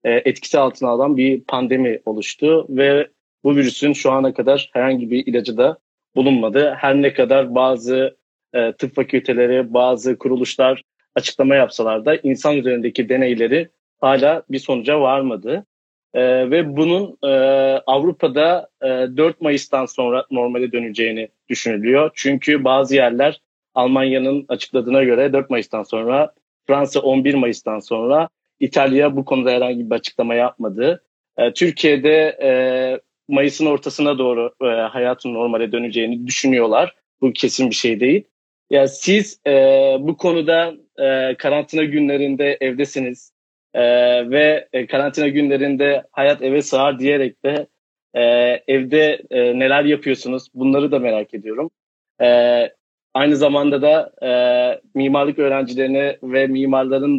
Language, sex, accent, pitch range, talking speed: Turkish, male, native, 125-145 Hz, 110 wpm